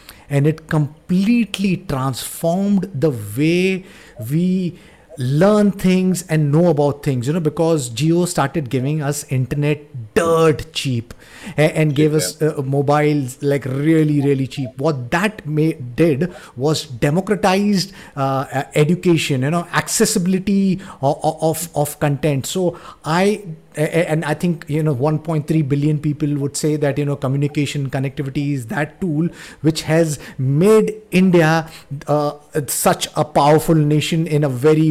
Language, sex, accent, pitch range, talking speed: English, male, Indian, 145-170 Hz, 135 wpm